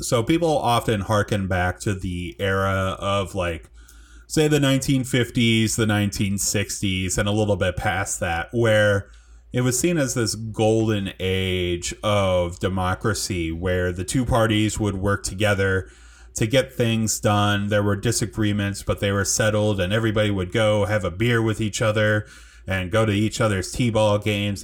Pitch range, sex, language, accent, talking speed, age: 90-110 Hz, male, English, American, 160 wpm, 30-49